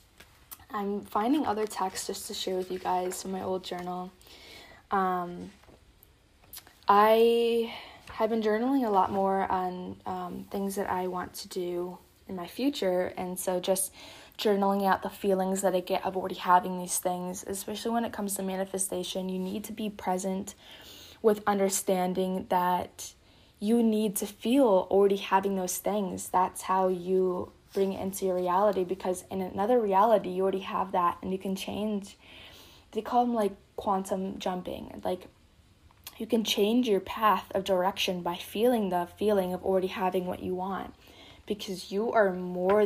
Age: 10-29